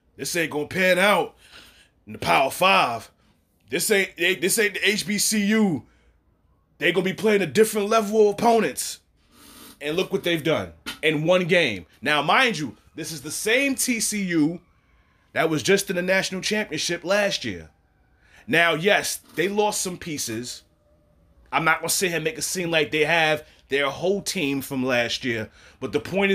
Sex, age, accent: male, 30-49, American